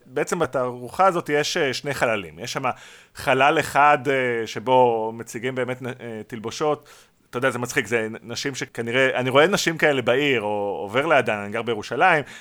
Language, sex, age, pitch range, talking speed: Hebrew, male, 30-49, 120-180 Hz, 155 wpm